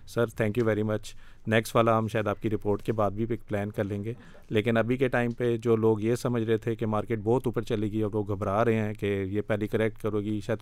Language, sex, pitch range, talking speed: Urdu, male, 105-115 Hz, 270 wpm